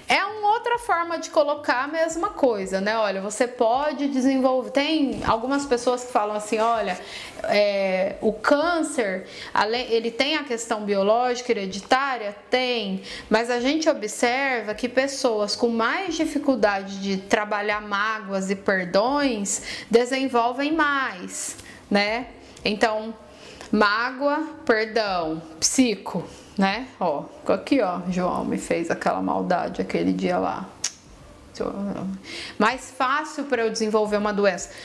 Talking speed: 120 wpm